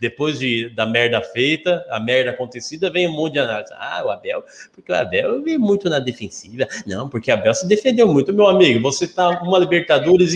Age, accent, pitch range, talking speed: 20-39, Brazilian, 115-150 Hz, 210 wpm